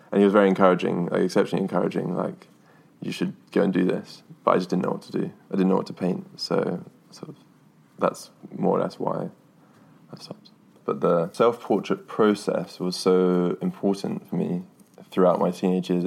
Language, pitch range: English, 90-100 Hz